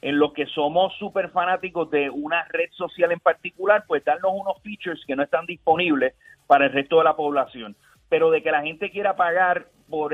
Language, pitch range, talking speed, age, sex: Spanish, 150-195 Hz, 200 wpm, 30-49, male